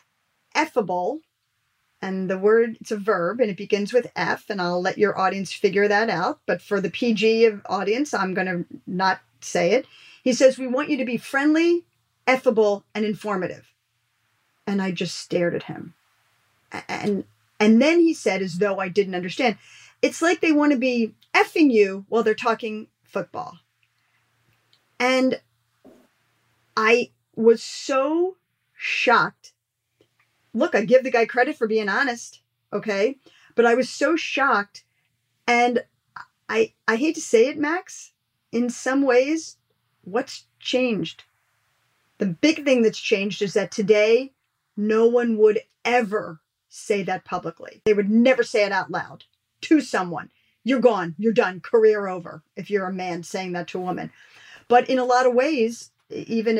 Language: English